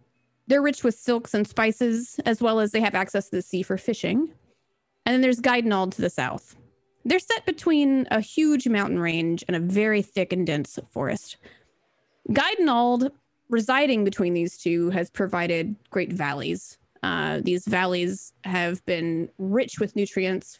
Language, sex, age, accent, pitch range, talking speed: English, female, 20-39, American, 185-245 Hz, 160 wpm